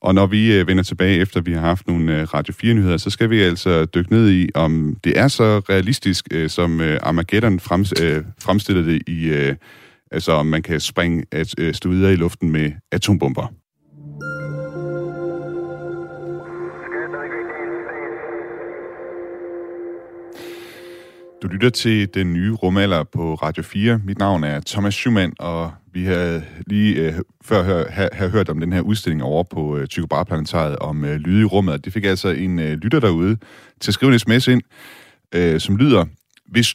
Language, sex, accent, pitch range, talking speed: Danish, male, native, 85-110 Hz, 140 wpm